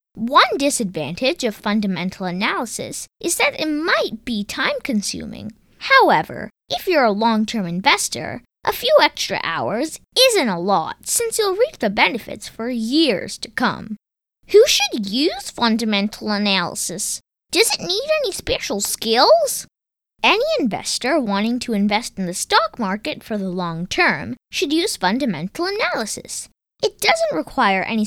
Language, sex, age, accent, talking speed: English, female, 20-39, American, 145 wpm